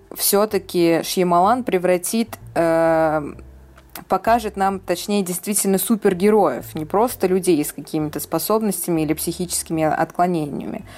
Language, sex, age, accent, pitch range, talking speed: Russian, female, 20-39, native, 160-200 Hz, 100 wpm